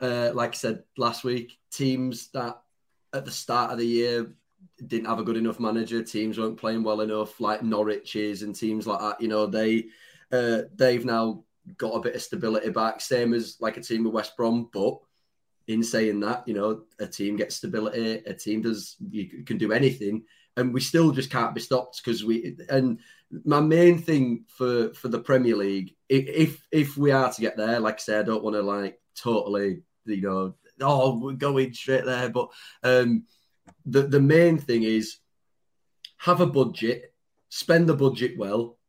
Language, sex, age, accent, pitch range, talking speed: English, male, 20-39, British, 110-135 Hz, 190 wpm